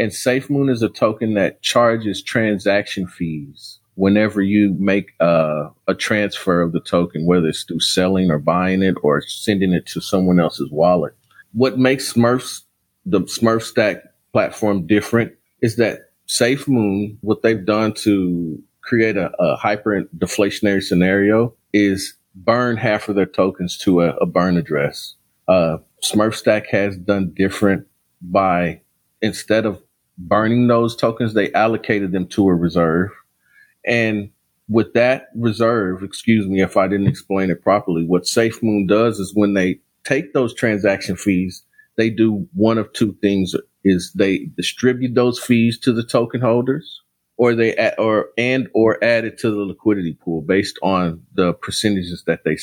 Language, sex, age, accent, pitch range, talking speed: English, male, 40-59, American, 95-115 Hz, 155 wpm